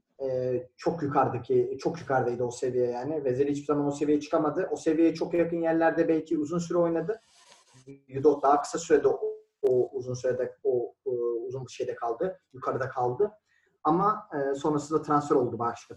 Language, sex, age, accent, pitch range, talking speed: Turkish, male, 30-49, native, 140-180 Hz, 170 wpm